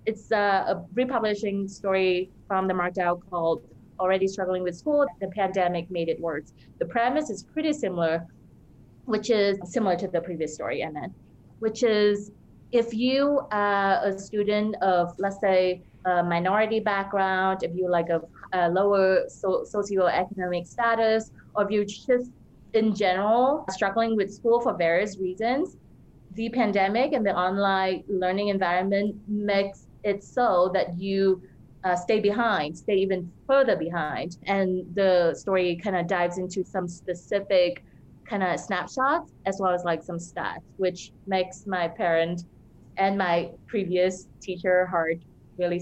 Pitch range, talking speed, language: 175-205 Hz, 145 wpm, English